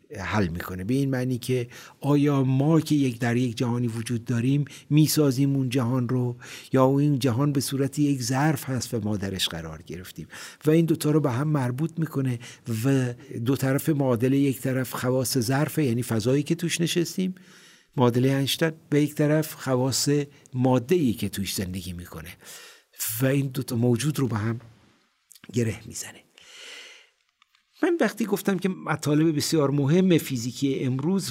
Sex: male